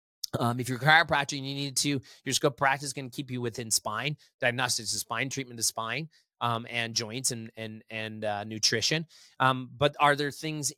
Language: English